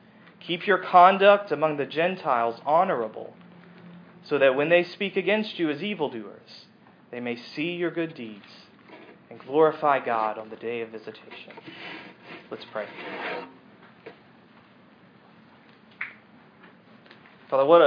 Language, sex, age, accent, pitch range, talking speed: English, male, 30-49, American, 130-175 Hz, 110 wpm